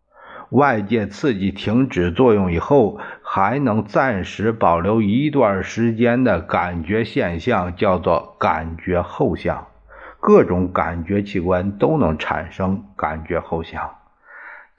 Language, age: Chinese, 50-69